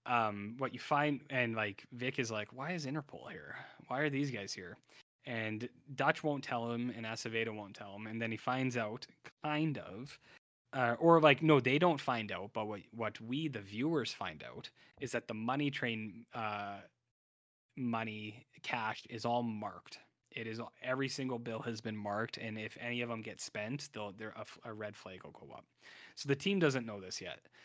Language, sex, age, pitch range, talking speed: English, male, 20-39, 110-135 Hz, 200 wpm